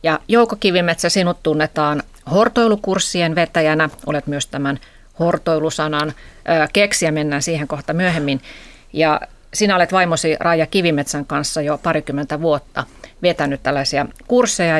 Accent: native